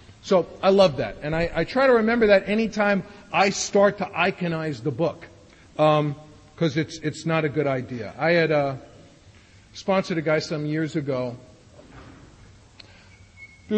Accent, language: American, English